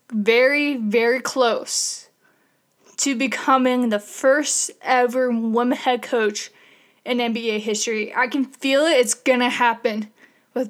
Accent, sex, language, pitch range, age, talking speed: American, female, English, 225-260 Hz, 10-29, 130 wpm